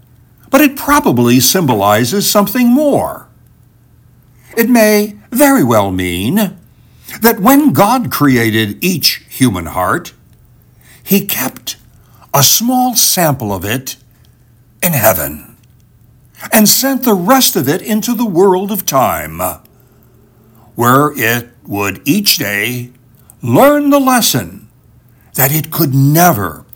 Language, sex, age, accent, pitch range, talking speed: English, male, 60-79, American, 115-185 Hz, 110 wpm